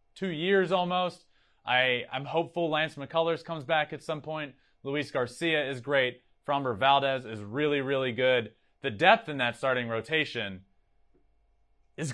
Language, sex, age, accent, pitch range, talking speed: English, male, 30-49, American, 120-150 Hz, 150 wpm